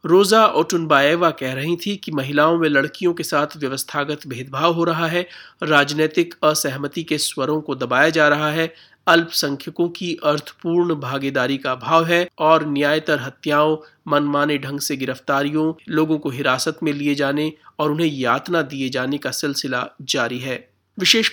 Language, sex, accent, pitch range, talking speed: Hindi, male, native, 135-165 Hz, 160 wpm